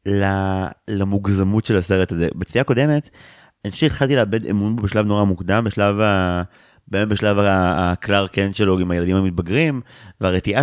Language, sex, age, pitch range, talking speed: Hebrew, male, 30-49, 100-130 Hz, 145 wpm